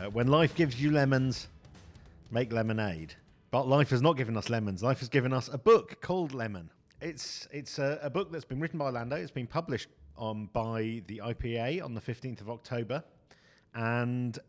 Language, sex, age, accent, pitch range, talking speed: English, male, 40-59, British, 115-145 Hz, 190 wpm